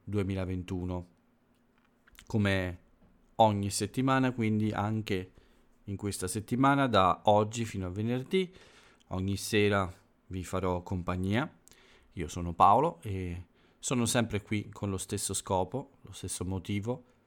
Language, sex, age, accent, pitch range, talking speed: Italian, male, 40-59, native, 90-110 Hz, 115 wpm